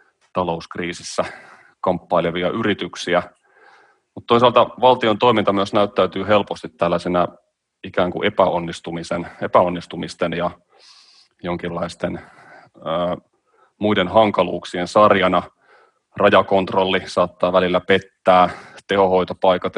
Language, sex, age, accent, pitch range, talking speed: Finnish, male, 30-49, native, 85-100 Hz, 75 wpm